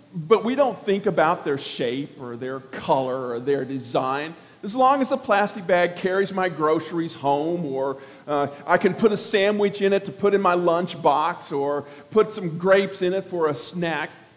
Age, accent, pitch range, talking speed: 50-69, American, 150-215 Hz, 195 wpm